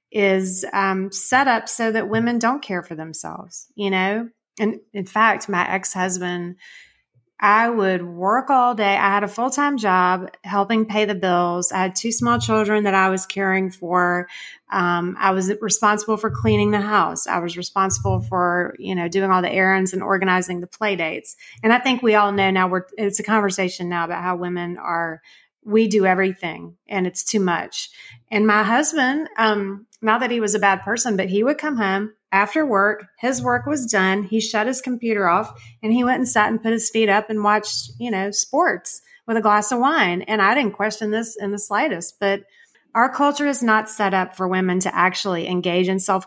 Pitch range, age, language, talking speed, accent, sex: 185-220 Hz, 30-49, English, 205 wpm, American, female